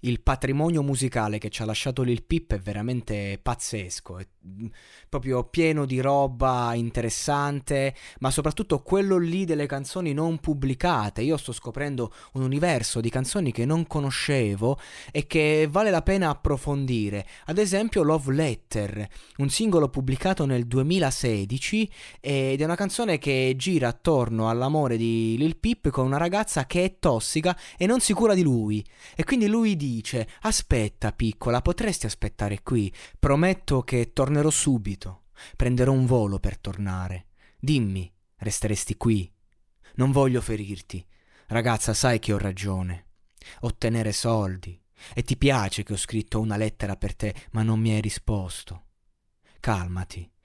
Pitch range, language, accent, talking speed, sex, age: 105-145 Hz, Italian, native, 145 wpm, male, 20-39